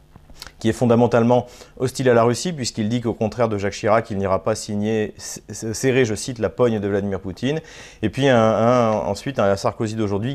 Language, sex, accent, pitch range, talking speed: French, male, French, 100-120 Hz, 180 wpm